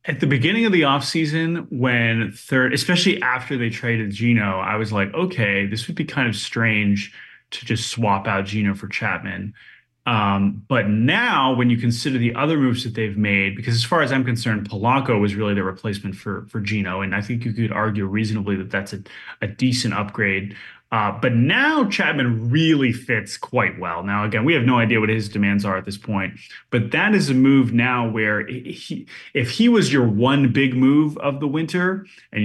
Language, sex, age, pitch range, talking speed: English, male, 20-39, 105-140 Hz, 200 wpm